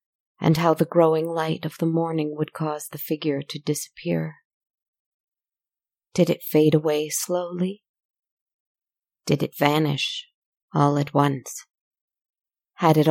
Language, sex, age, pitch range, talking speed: English, female, 30-49, 145-170 Hz, 125 wpm